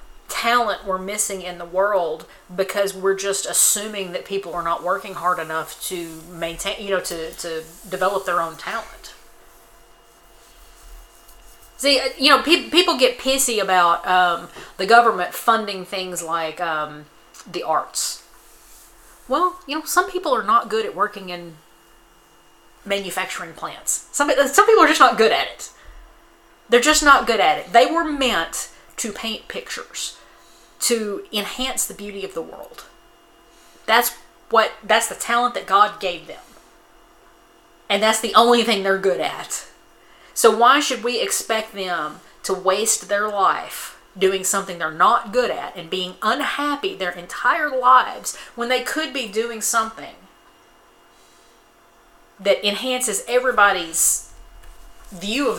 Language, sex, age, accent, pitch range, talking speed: English, female, 30-49, American, 180-255 Hz, 145 wpm